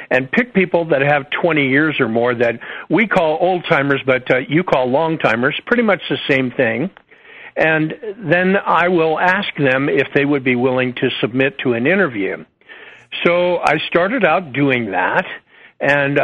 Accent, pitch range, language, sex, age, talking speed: American, 135-170 Hz, English, male, 60-79, 170 wpm